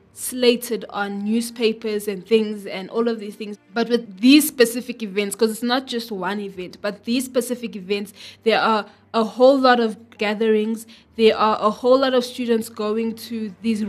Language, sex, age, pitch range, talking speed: English, female, 20-39, 205-240 Hz, 180 wpm